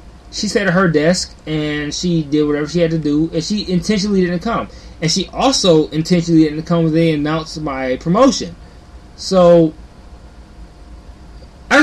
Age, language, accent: 20-39, English, American